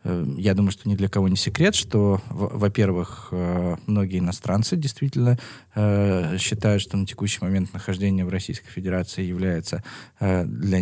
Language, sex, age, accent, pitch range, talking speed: Russian, male, 20-39, native, 90-110 Hz, 135 wpm